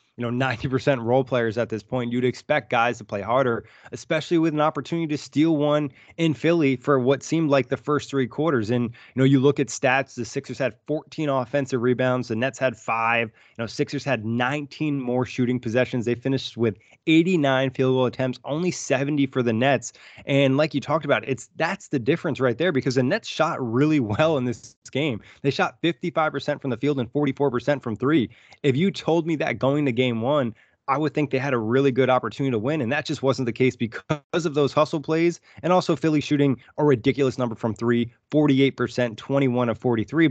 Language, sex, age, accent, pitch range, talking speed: English, male, 20-39, American, 125-150 Hz, 210 wpm